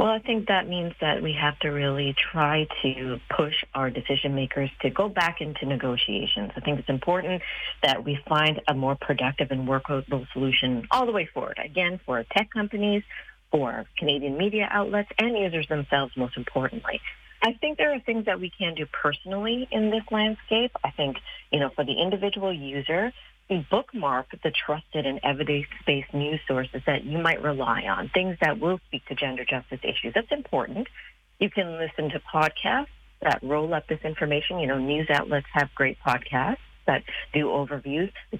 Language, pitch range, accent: English, 140-185 Hz, American